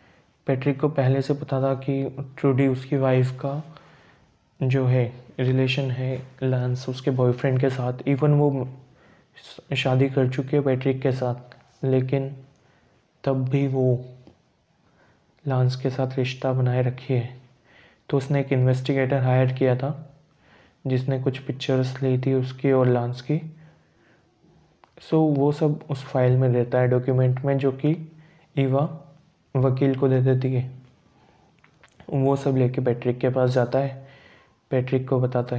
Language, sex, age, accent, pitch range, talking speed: Hindi, male, 20-39, native, 130-140 Hz, 145 wpm